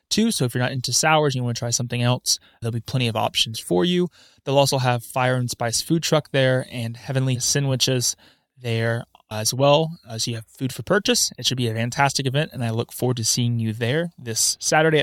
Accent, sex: American, male